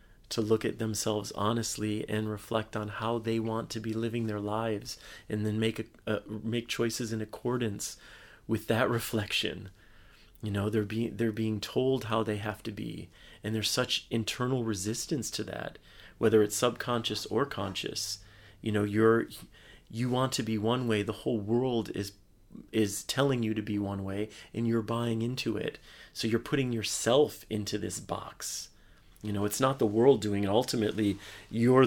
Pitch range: 105-120 Hz